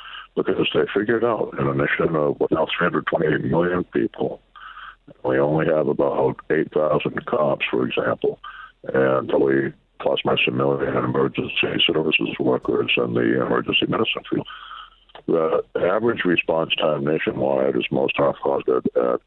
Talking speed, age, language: 150 wpm, 60-79, English